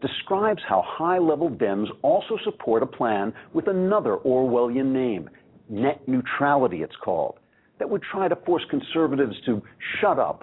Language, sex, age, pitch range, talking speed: English, male, 60-79, 125-190 Hz, 145 wpm